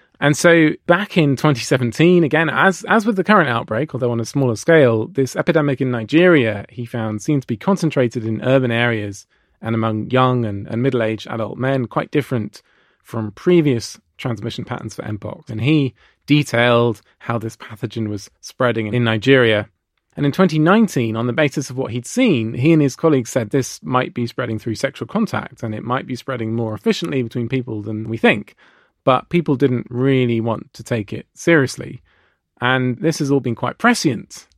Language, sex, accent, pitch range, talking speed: English, male, British, 110-140 Hz, 185 wpm